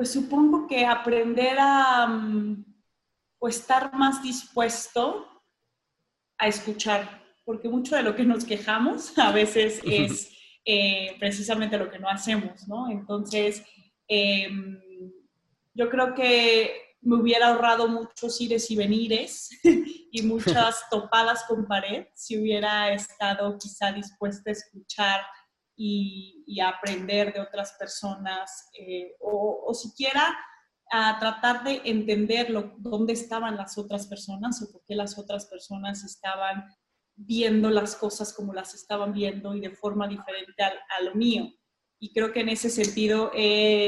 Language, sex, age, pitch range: Spanish, female, 30-49, 200-235 Hz